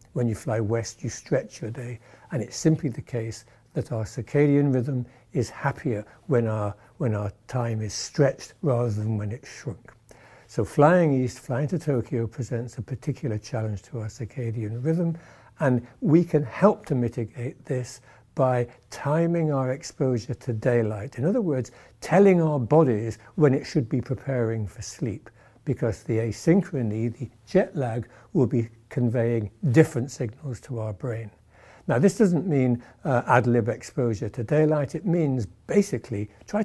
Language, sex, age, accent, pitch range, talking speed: English, male, 60-79, British, 115-140 Hz, 160 wpm